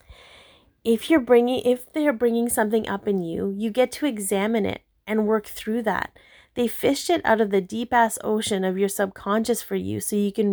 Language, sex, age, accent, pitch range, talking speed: English, female, 30-49, American, 200-235 Hz, 200 wpm